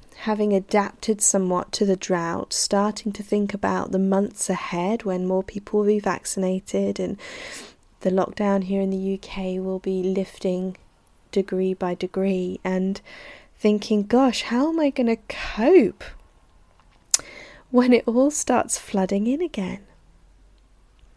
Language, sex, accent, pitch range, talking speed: English, female, British, 190-230 Hz, 135 wpm